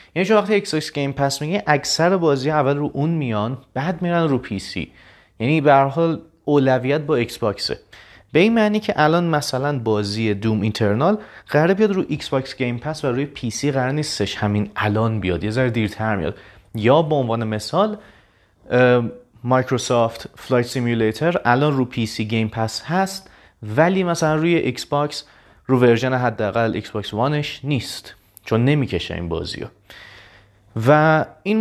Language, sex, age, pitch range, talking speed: Persian, male, 30-49, 110-150 Hz, 160 wpm